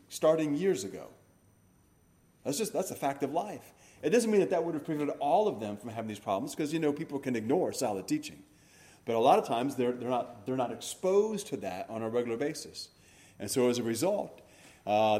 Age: 30-49